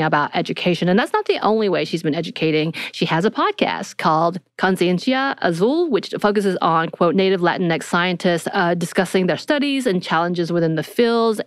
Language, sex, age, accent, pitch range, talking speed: English, female, 30-49, American, 165-205 Hz, 180 wpm